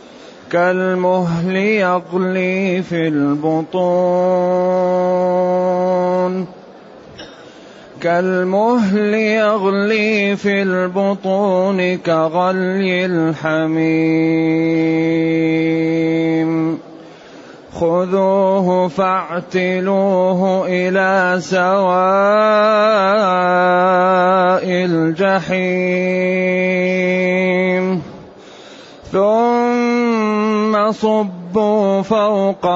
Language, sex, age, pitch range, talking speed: Arabic, male, 30-49, 165-190 Hz, 35 wpm